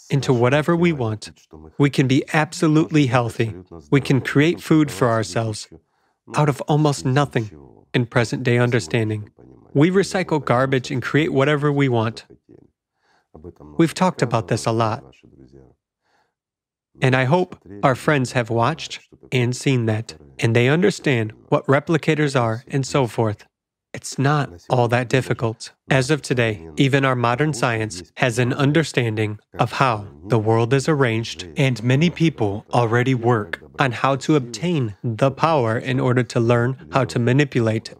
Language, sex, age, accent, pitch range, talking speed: English, male, 40-59, American, 115-150 Hz, 150 wpm